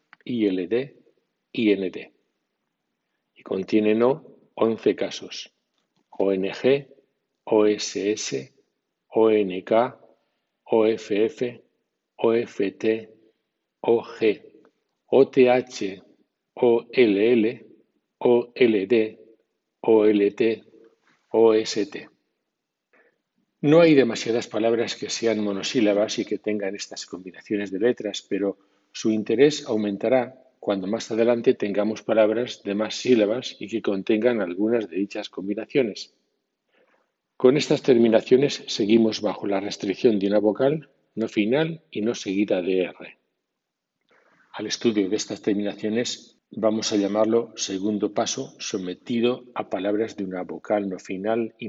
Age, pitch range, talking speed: 60-79, 100-115 Hz, 100 wpm